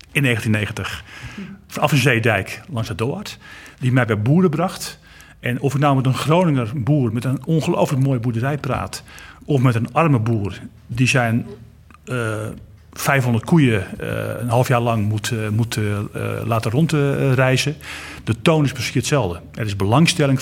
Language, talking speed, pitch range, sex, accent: Dutch, 170 wpm, 110-140 Hz, male, Dutch